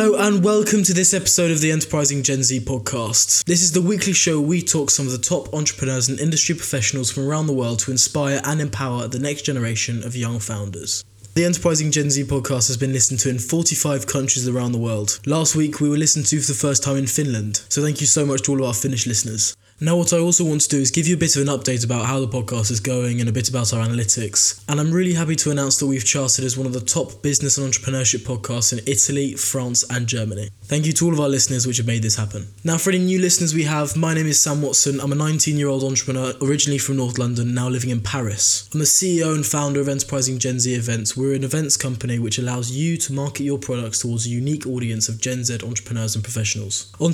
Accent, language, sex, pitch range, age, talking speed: British, English, male, 120-150 Hz, 10-29, 255 wpm